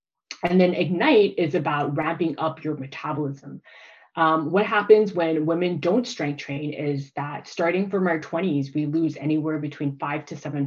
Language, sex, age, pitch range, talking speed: English, female, 20-39, 145-180 Hz, 170 wpm